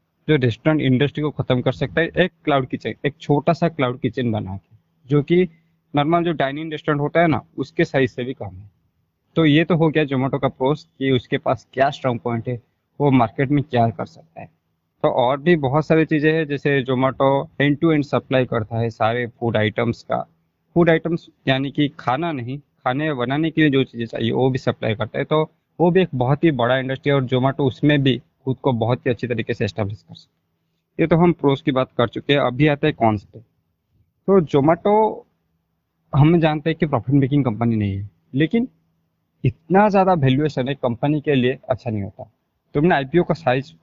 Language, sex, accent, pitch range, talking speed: Hindi, male, native, 120-160 Hz, 150 wpm